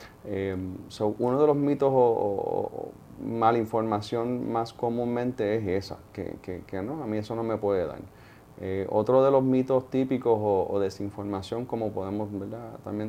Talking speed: 175 wpm